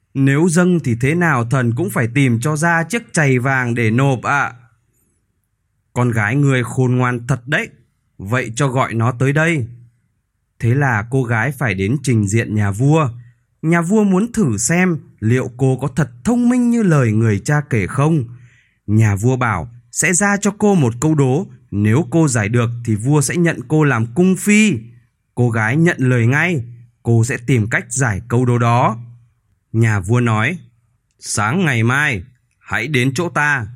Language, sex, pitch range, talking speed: Vietnamese, male, 115-155 Hz, 180 wpm